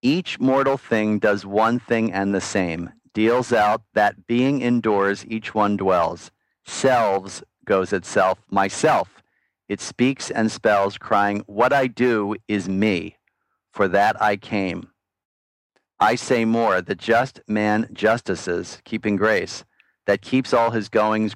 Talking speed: 140 wpm